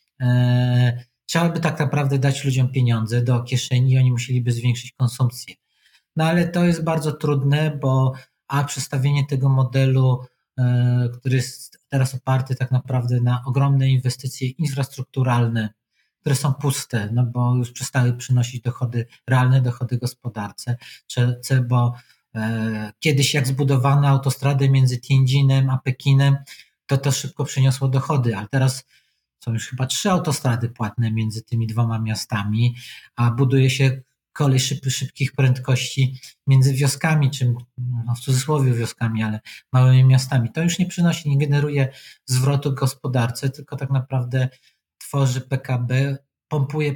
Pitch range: 120-140 Hz